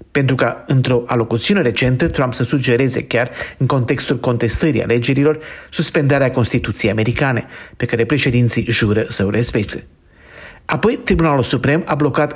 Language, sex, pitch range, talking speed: Romanian, male, 115-145 Hz, 135 wpm